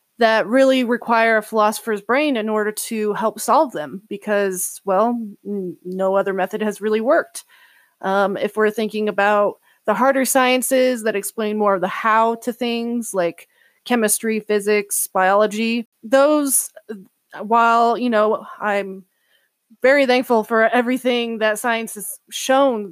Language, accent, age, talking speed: English, American, 20-39, 140 wpm